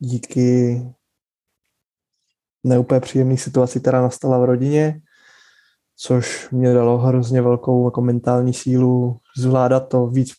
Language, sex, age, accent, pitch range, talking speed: Czech, male, 20-39, native, 125-135 Hz, 115 wpm